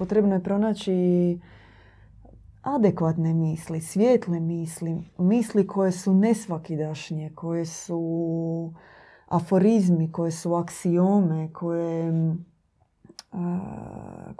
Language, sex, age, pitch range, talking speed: Croatian, female, 20-39, 170-195 Hz, 80 wpm